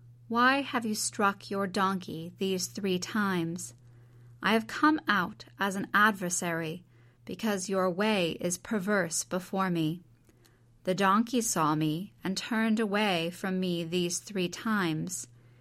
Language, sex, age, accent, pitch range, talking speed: English, female, 30-49, American, 155-215 Hz, 135 wpm